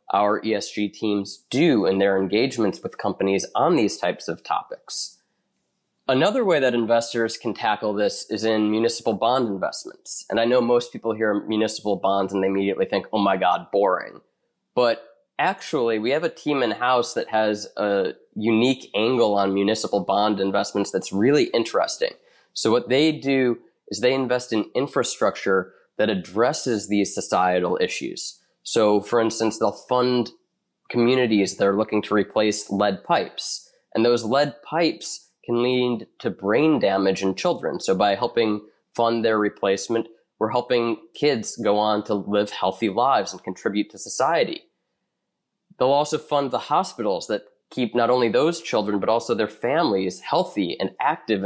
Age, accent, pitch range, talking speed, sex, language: 20-39, American, 105-125 Hz, 160 wpm, male, English